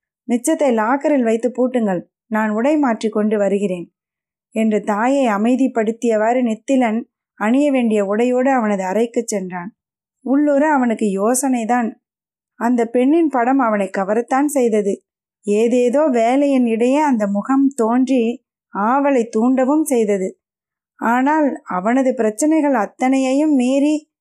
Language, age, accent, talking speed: Tamil, 20-39, native, 105 wpm